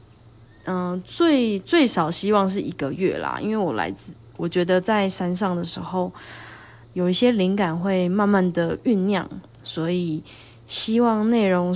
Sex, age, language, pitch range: female, 20-39, Chinese, 160-195 Hz